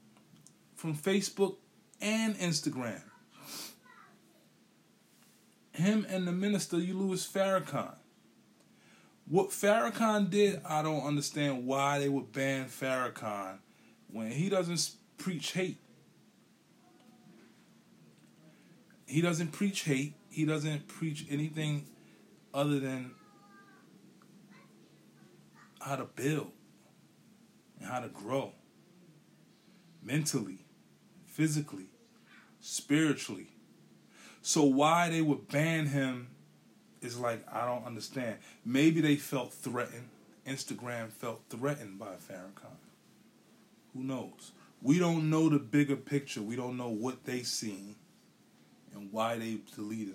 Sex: male